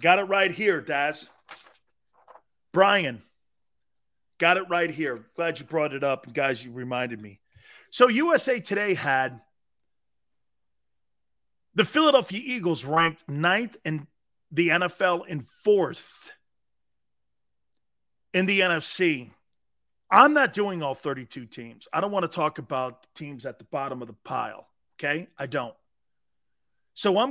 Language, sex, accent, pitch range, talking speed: English, male, American, 135-190 Hz, 130 wpm